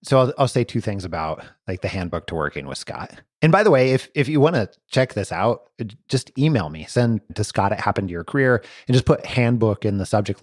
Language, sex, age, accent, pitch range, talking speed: English, male, 30-49, American, 105-130 Hz, 255 wpm